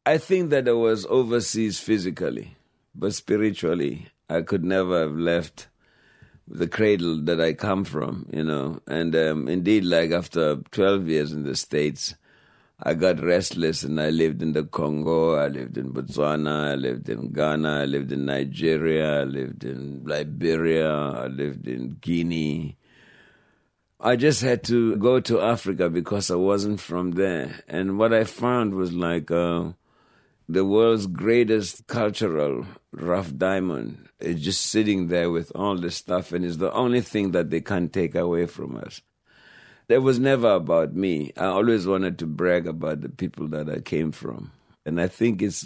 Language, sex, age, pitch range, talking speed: English, male, 60-79, 80-105 Hz, 165 wpm